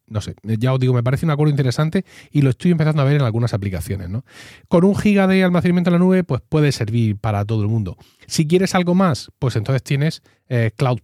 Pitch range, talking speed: 110-160 Hz, 240 wpm